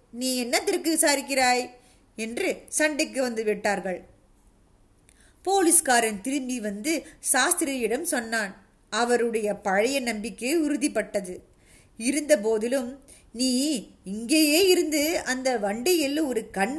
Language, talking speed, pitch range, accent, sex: Tamil, 95 wpm, 220-290 Hz, native, female